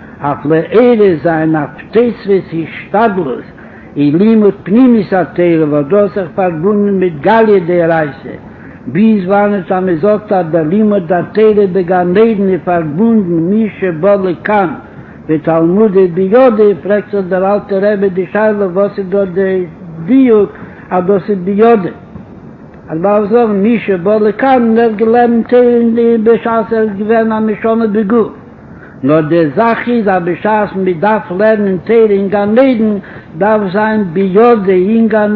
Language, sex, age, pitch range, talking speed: Hebrew, male, 60-79, 185-225 Hz, 105 wpm